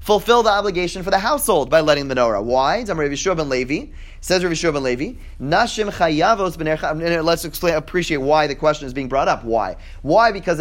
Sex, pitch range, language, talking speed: male, 150-195 Hz, English, 170 wpm